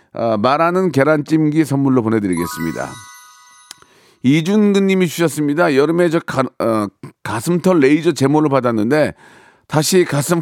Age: 40-59